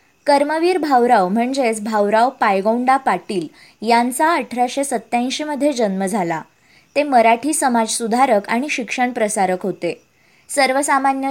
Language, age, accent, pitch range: Marathi, 20-39, native, 215-275 Hz